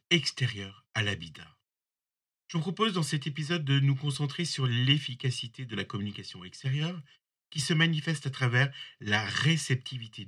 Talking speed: 145 wpm